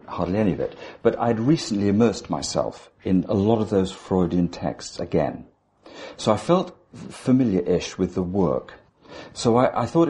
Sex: male